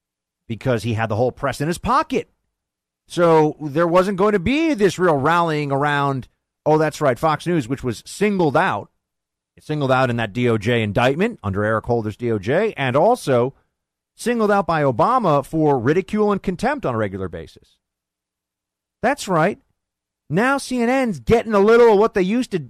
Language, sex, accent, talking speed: English, male, American, 170 wpm